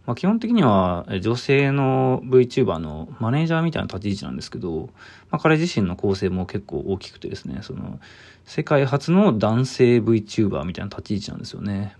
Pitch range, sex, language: 100-135 Hz, male, Japanese